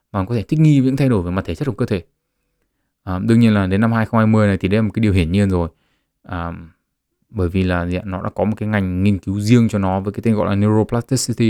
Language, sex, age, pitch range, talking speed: Vietnamese, male, 20-39, 95-110 Hz, 280 wpm